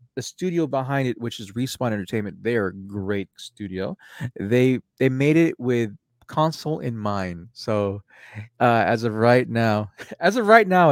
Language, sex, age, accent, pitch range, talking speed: English, male, 20-39, American, 105-130 Hz, 160 wpm